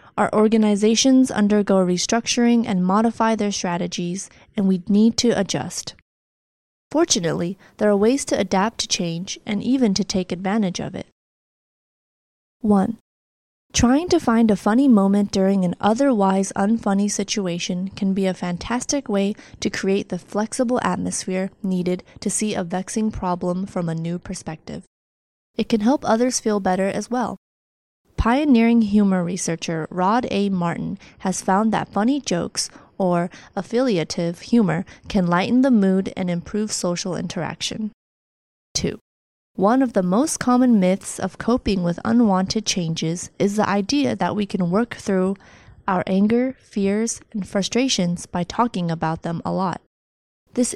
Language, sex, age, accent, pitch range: Chinese, female, 20-39, American, 180-230 Hz